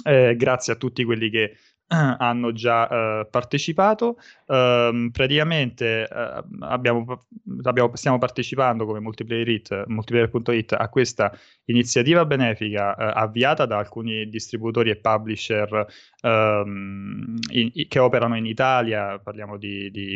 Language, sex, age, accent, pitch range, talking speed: Italian, male, 20-39, native, 110-130 Hz, 120 wpm